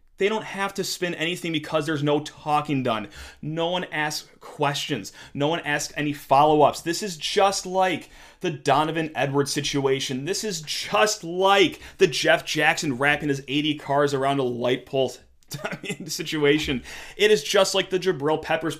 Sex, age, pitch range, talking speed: male, 30-49, 140-175 Hz, 165 wpm